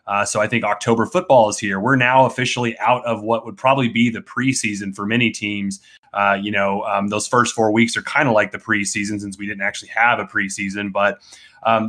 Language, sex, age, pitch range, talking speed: English, male, 30-49, 105-130 Hz, 225 wpm